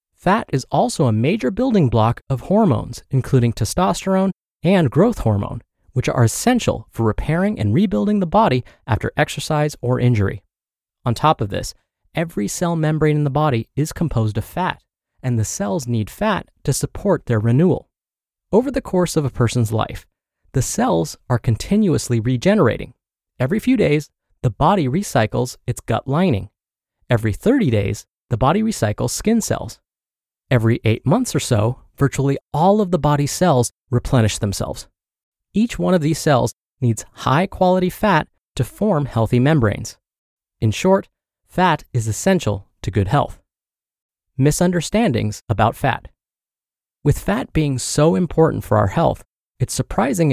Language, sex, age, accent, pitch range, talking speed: English, male, 30-49, American, 115-175 Hz, 150 wpm